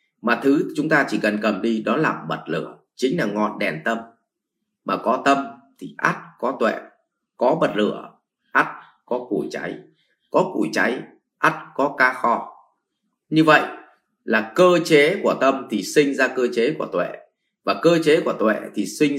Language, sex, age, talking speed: English, male, 20-39, 185 wpm